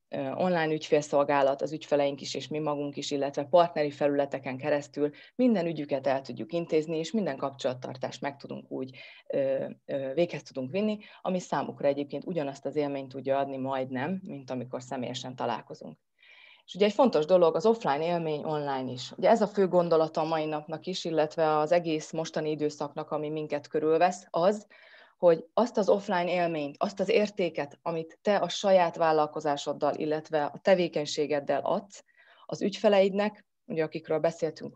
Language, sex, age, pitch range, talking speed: Hungarian, female, 30-49, 145-180 Hz, 155 wpm